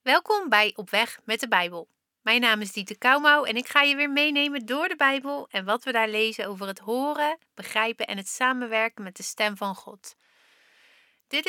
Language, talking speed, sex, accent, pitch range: Dutch, 205 wpm, female, Dutch, 210-285 Hz